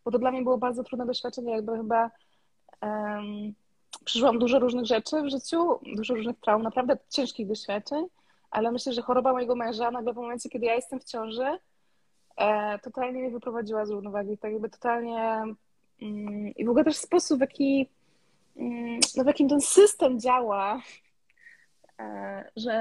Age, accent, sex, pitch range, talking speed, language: 20-39, native, female, 225-260 Hz, 150 wpm, Polish